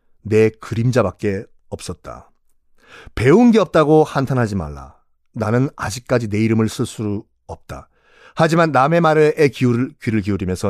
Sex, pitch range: male, 110-165 Hz